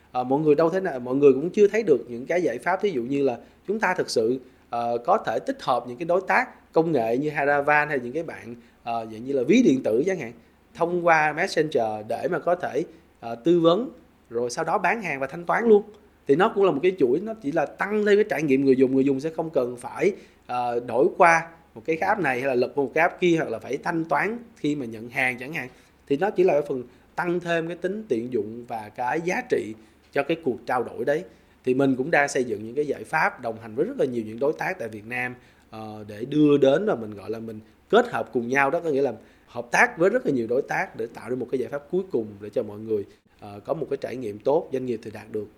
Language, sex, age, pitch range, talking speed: Vietnamese, male, 20-39, 115-165 Hz, 275 wpm